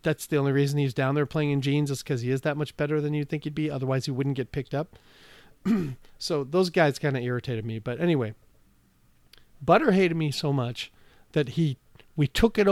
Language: English